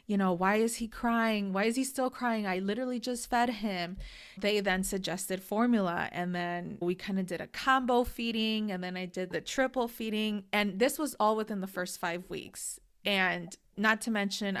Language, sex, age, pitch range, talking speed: English, female, 20-39, 180-210 Hz, 200 wpm